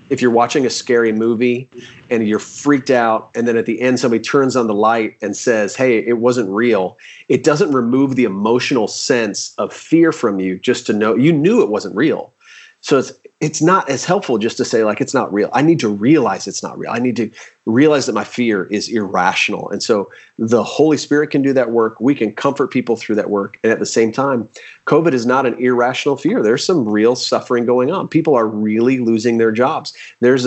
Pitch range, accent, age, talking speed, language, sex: 110-130 Hz, American, 30-49, 225 wpm, English, male